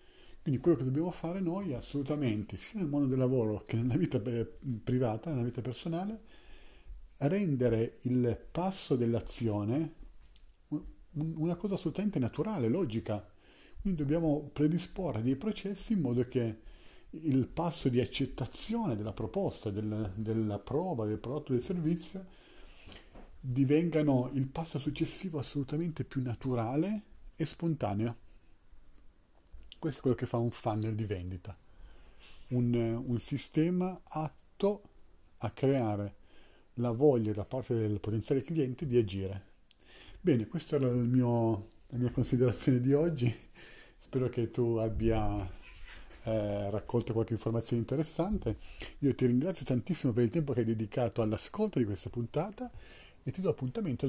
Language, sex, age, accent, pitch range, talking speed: Italian, male, 40-59, native, 110-150 Hz, 130 wpm